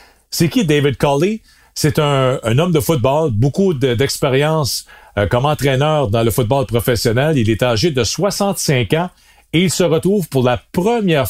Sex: male